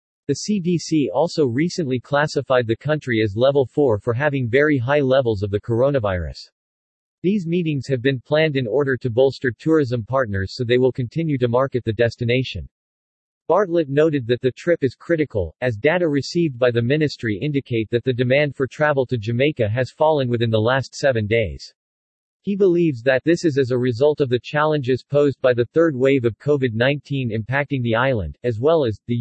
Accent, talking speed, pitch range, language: American, 185 wpm, 120-150 Hz, English